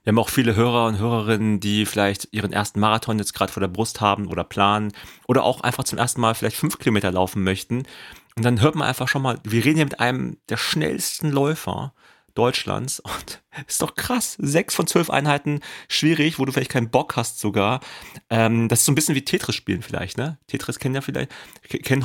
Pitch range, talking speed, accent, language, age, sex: 105-135 Hz, 210 wpm, German, German, 30-49, male